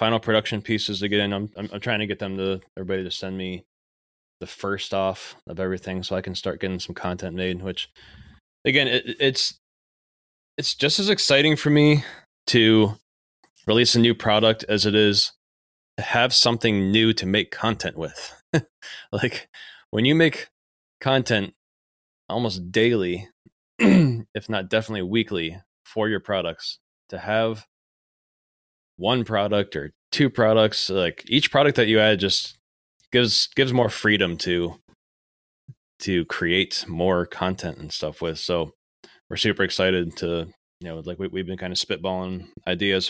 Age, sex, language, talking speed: 20-39, male, English, 155 wpm